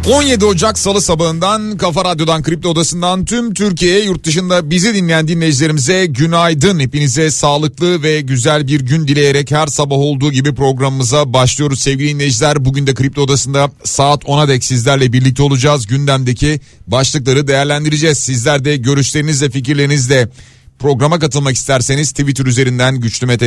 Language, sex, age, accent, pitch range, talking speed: Turkish, male, 40-59, native, 125-155 Hz, 140 wpm